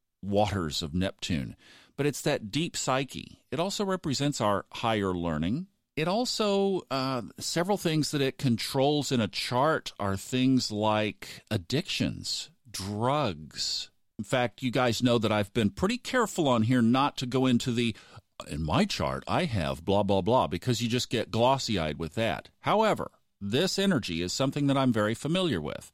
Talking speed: 165 wpm